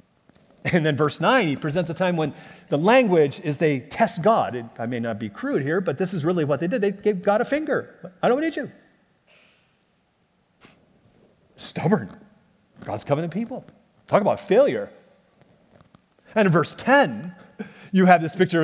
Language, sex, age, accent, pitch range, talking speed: English, male, 40-59, American, 160-245 Hz, 165 wpm